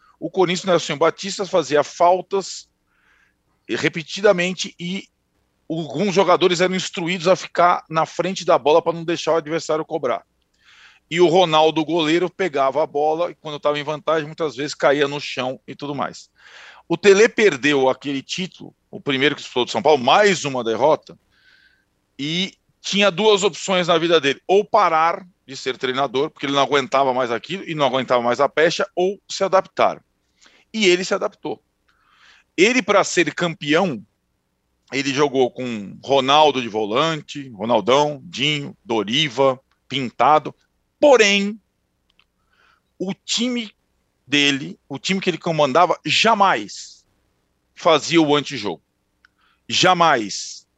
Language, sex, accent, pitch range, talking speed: Portuguese, male, Brazilian, 140-185 Hz, 140 wpm